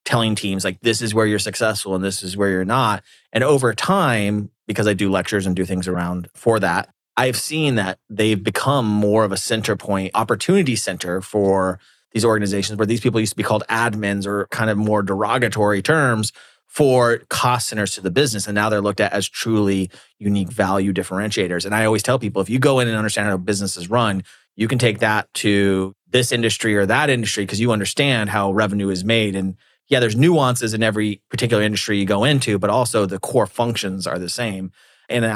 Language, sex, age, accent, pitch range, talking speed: English, male, 30-49, American, 95-115 Hz, 210 wpm